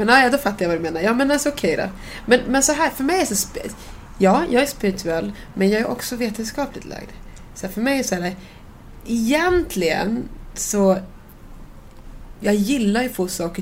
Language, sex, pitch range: Swedish, female, 175-215 Hz